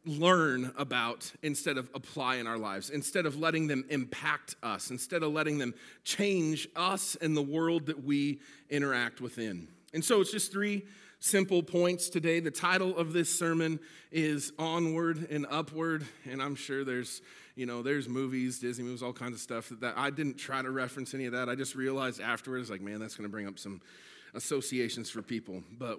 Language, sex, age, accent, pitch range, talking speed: English, male, 40-59, American, 130-195 Hz, 195 wpm